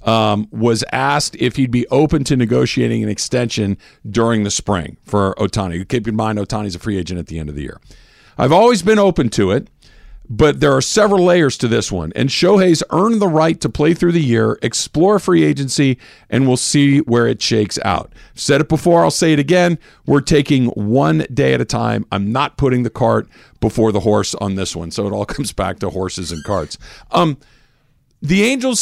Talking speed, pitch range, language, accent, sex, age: 210 wpm, 110-150 Hz, English, American, male, 50-69